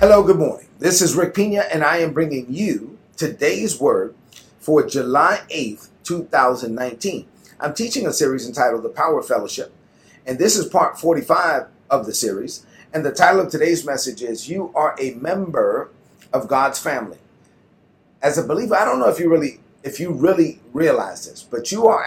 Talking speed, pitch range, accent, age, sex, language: 185 wpm, 135-175 Hz, American, 40-59, male, English